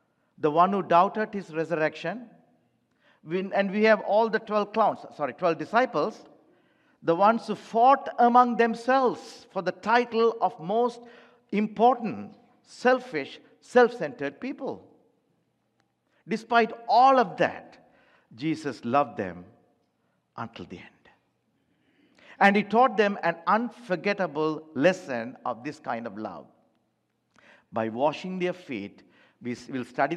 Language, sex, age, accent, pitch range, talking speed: English, male, 50-69, Indian, 150-230 Hz, 115 wpm